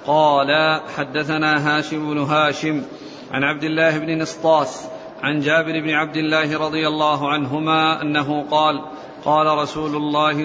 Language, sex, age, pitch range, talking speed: Arabic, male, 50-69, 150-155 Hz, 130 wpm